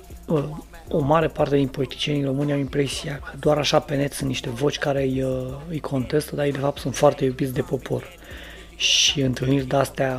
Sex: male